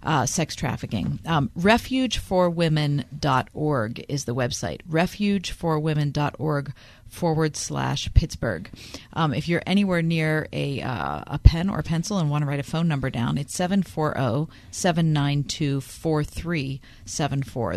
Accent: American